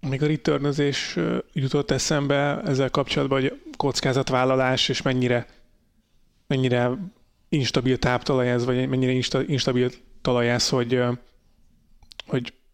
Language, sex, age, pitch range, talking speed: Hungarian, male, 30-49, 125-140 Hz, 105 wpm